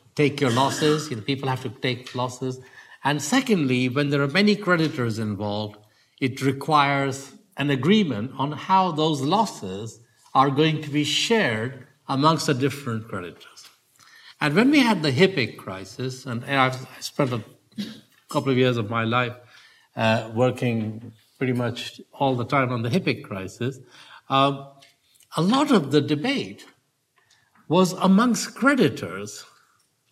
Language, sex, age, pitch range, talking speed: English, male, 60-79, 125-150 Hz, 145 wpm